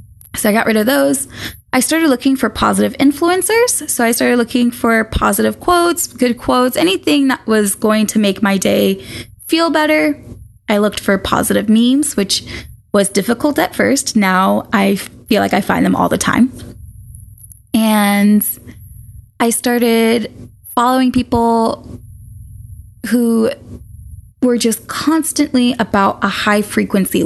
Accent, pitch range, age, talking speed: American, 190-265 Hz, 20-39, 140 wpm